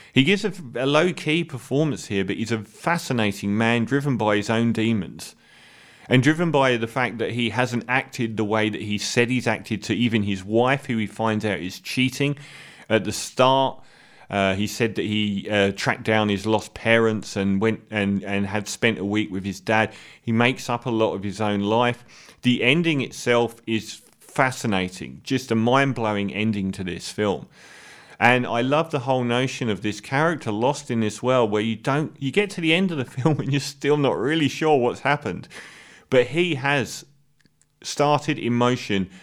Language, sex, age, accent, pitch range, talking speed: English, male, 30-49, British, 105-130 Hz, 190 wpm